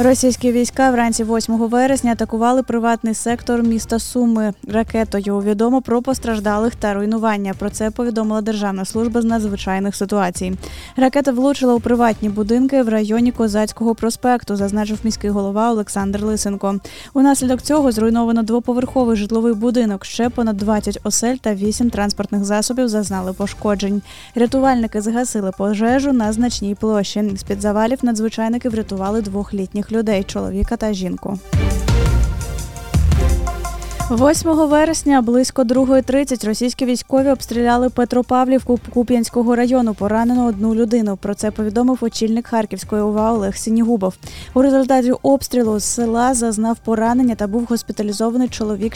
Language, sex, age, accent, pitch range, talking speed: Ukrainian, female, 20-39, native, 210-245 Hz, 125 wpm